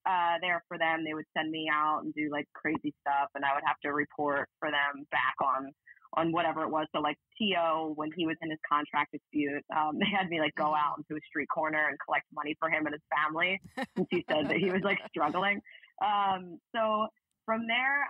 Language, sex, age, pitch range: English, female, 20-39, 150-180 Hz